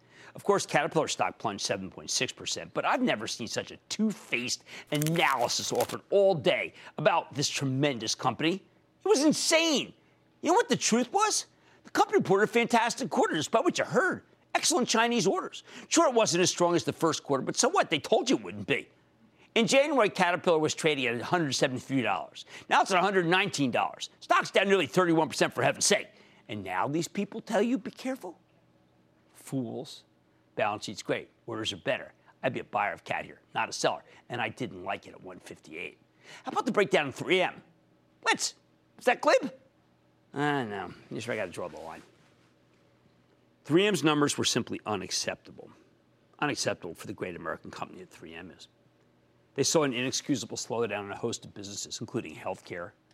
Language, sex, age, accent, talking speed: English, male, 50-69, American, 180 wpm